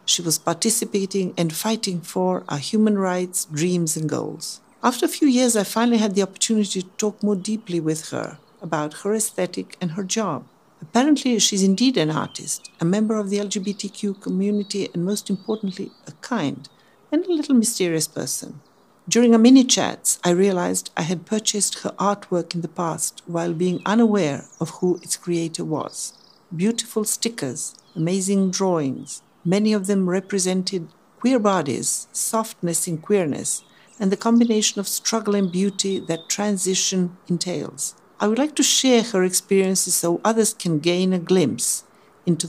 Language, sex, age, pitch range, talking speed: English, female, 60-79, 170-210 Hz, 160 wpm